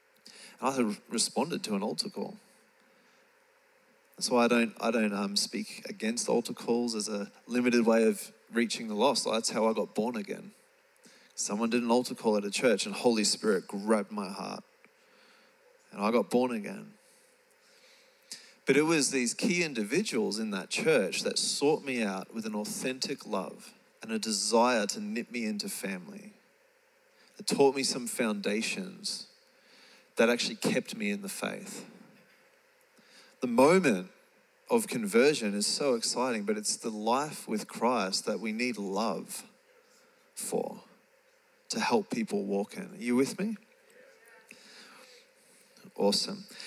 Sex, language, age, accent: male, English, 20-39, Australian